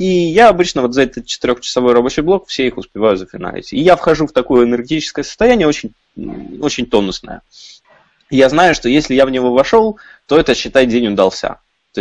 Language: Russian